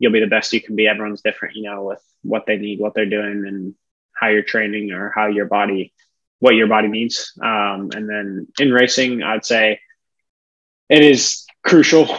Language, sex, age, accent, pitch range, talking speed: English, male, 20-39, American, 105-115 Hz, 195 wpm